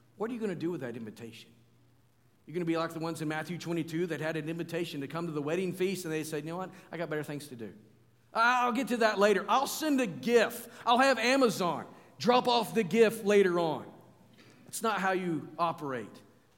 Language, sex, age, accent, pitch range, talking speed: English, male, 50-69, American, 120-200 Hz, 230 wpm